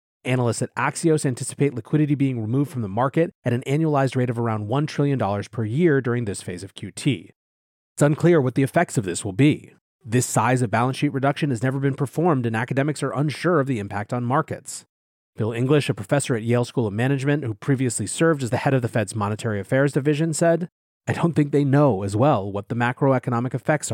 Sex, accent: male, American